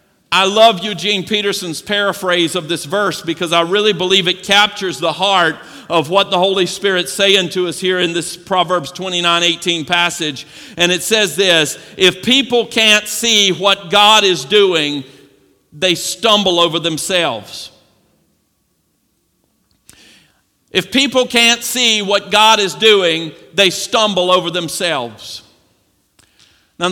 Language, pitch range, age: English, 180-215 Hz, 50-69